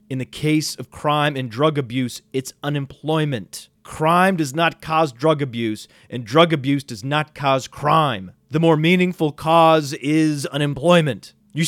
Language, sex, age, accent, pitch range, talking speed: English, male, 30-49, American, 140-195 Hz, 155 wpm